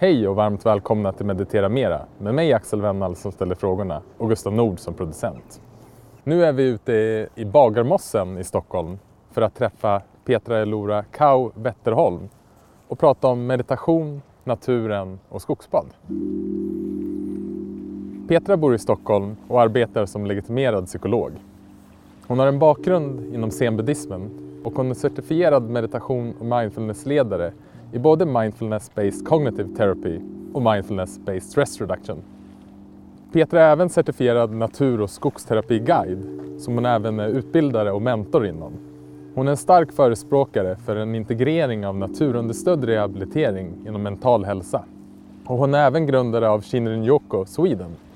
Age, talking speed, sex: 20-39, 140 wpm, male